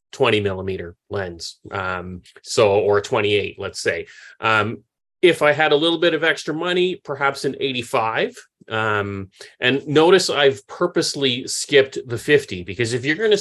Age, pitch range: 30-49, 110-150 Hz